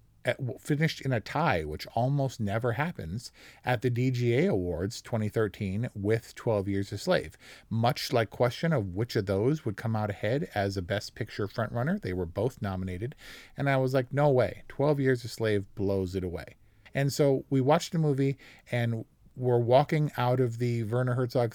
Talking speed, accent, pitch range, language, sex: 185 wpm, American, 105-130 Hz, English, male